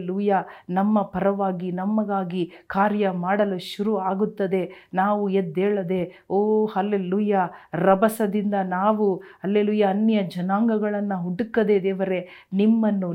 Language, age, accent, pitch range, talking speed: Kannada, 50-69, native, 190-220 Hz, 90 wpm